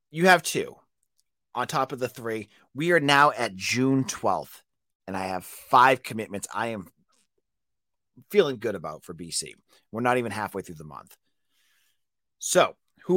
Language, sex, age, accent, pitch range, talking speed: English, male, 30-49, American, 105-155 Hz, 160 wpm